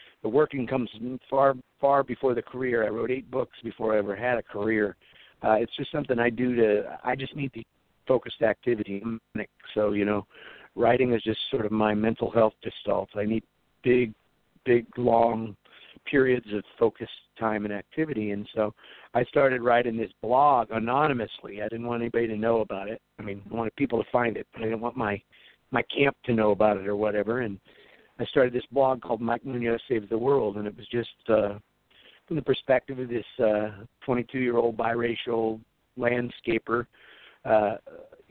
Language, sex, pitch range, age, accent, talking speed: English, male, 110-135 Hz, 50-69, American, 185 wpm